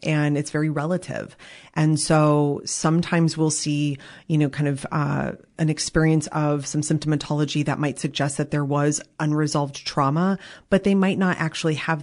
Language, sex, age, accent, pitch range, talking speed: English, female, 30-49, American, 145-165 Hz, 165 wpm